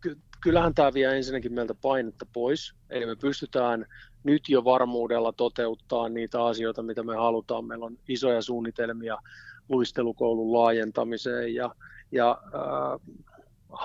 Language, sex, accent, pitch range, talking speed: Finnish, male, native, 115-130 Hz, 120 wpm